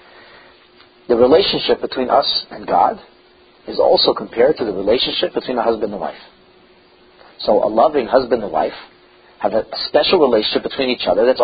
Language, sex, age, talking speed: English, male, 40-59, 170 wpm